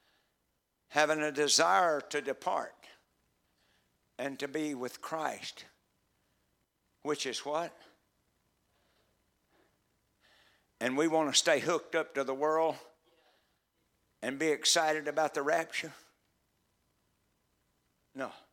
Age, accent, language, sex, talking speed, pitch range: 60-79, American, English, male, 95 wpm, 130-160 Hz